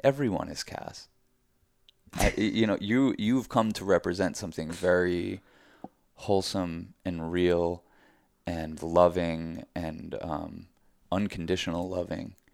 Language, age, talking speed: English, 20-39, 105 wpm